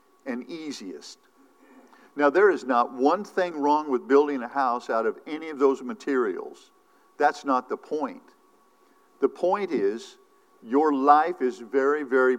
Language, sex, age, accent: English, male, 50-69, American